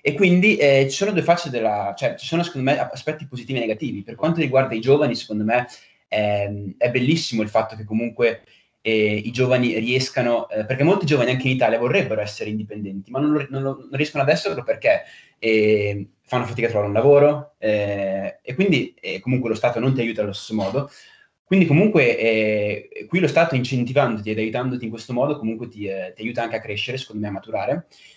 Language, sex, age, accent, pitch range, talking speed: Italian, male, 20-39, native, 110-150 Hz, 200 wpm